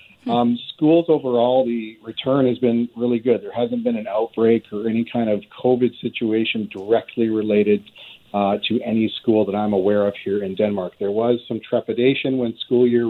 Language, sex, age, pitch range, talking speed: English, male, 40-59, 100-120 Hz, 185 wpm